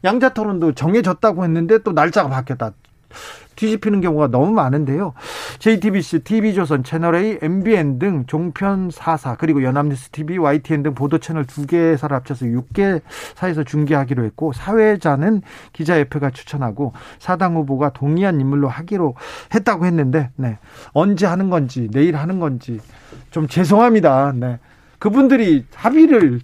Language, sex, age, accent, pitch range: Korean, male, 40-59, native, 140-205 Hz